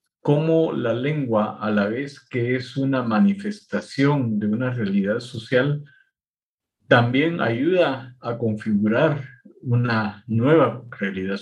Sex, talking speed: male, 110 wpm